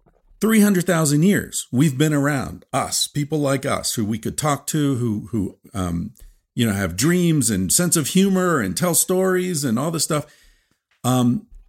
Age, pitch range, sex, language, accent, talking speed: 50-69, 105-155 Hz, male, English, American, 170 wpm